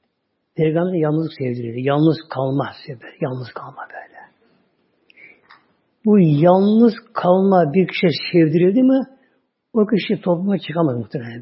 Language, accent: Turkish, native